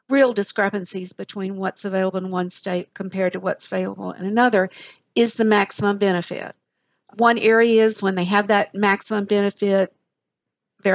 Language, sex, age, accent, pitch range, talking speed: English, female, 50-69, American, 195-230 Hz, 155 wpm